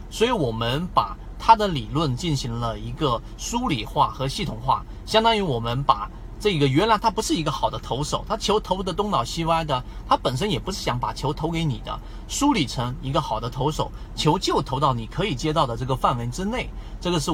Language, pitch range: Chinese, 120-175 Hz